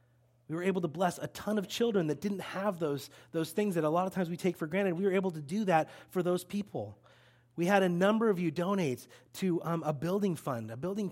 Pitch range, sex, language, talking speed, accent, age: 150-195 Hz, male, English, 255 wpm, American, 30-49